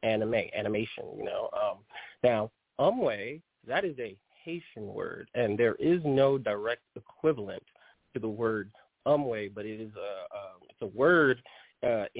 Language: English